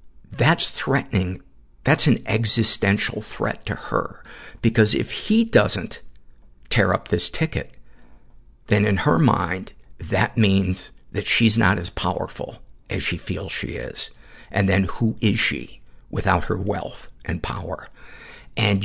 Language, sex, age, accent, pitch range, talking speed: English, male, 50-69, American, 90-115 Hz, 135 wpm